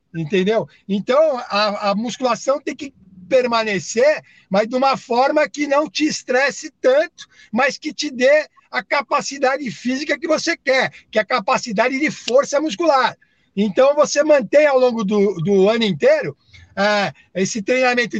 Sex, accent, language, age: male, Brazilian, Portuguese, 60-79